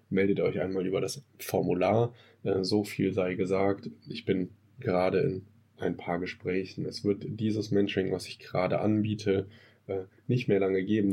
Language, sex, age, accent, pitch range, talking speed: German, male, 10-29, German, 95-110 Hz, 165 wpm